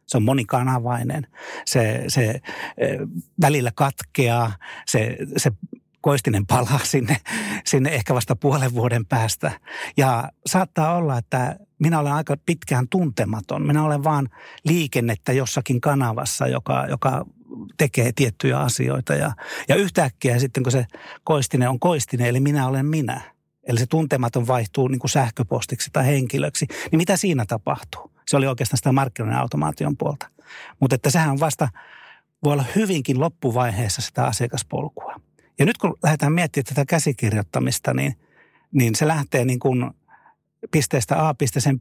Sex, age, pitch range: male, 60-79, 125-150 Hz